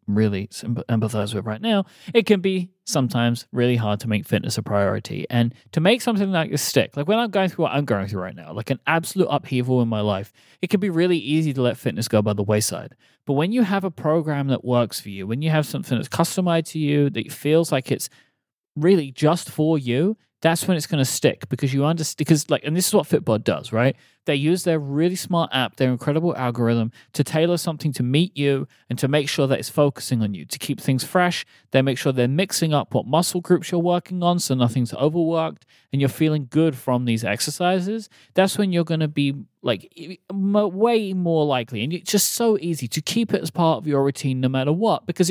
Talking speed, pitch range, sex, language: 230 wpm, 125-175 Hz, male, English